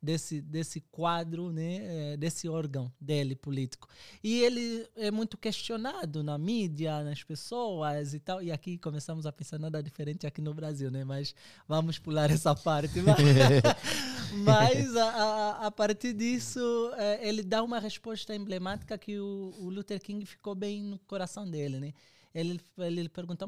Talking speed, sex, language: 155 wpm, male, Portuguese